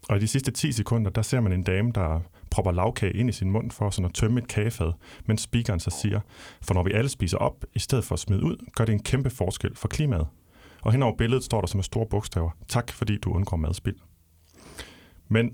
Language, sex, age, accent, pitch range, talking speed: Danish, male, 30-49, native, 85-110 Hz, 240 wpm